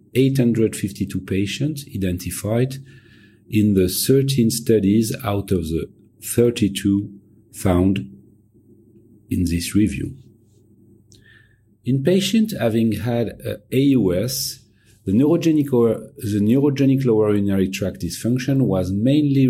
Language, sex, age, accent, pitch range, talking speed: English, male, 40-59, French, 100-120 Hz, 100 wpm